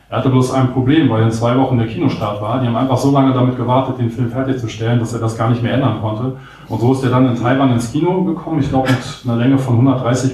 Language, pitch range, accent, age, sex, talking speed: German, 110-130 Hz, German, 30-49, male, 275 wpm